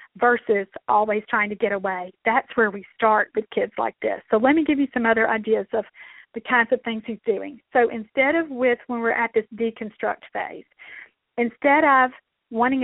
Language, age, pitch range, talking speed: English, 40-59, 215-255 Hz, 195 wpm